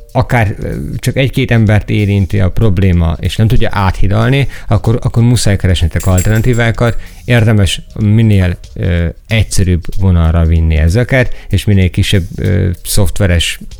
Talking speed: 115 wpm